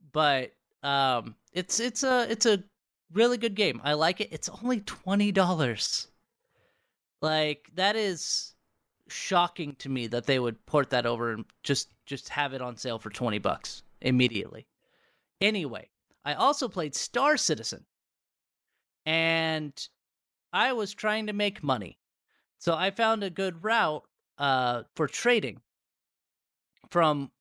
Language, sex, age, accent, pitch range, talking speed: English, male, 30-49, American, 135-200 Hz, 140 wpm